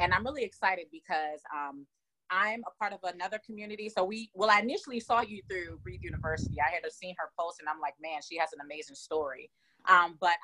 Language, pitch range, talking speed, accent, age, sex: English, 155-220 Hz, 220 wpm, American, 30-49, female